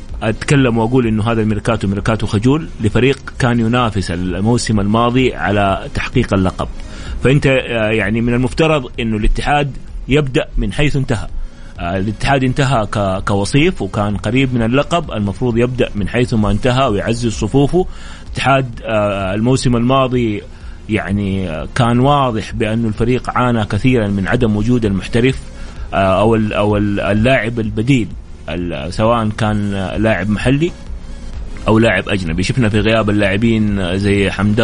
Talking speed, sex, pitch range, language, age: 125 wpm, male, 100-120 Hz, English, 30-49